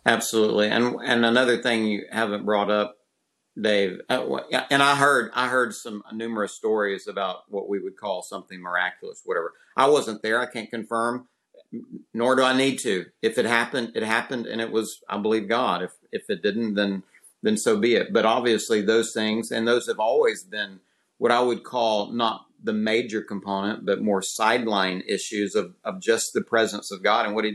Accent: American